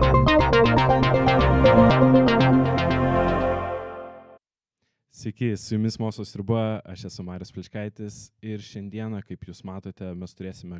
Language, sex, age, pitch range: English, male, 20-39, 95-120 Hz